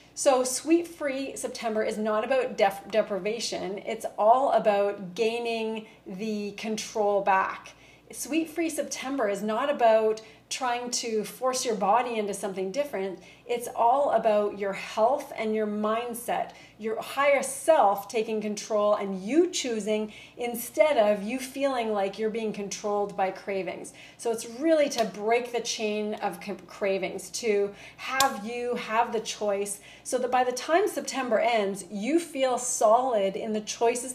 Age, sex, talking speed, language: 30-49, female, 145 wpm, English